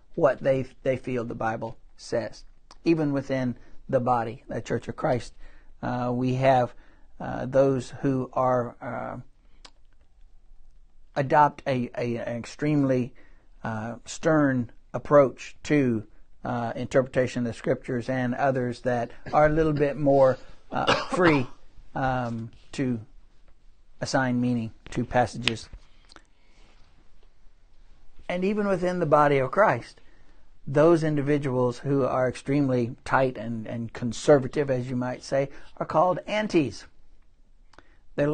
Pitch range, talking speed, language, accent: 115-140 Hz, 120 wpm, English, American